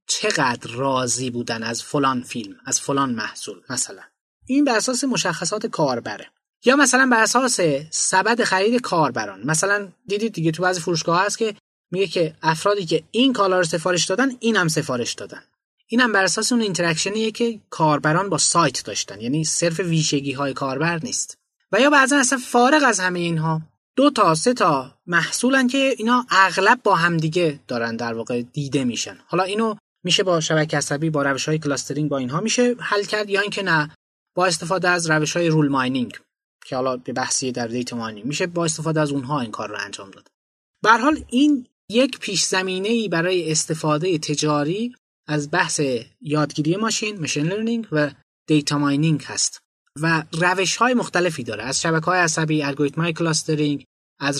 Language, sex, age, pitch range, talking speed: Persian, male, 20-39, 145-200 Hz, 170 wpm